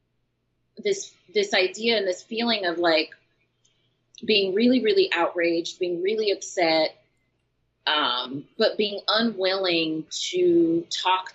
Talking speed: 110 wpm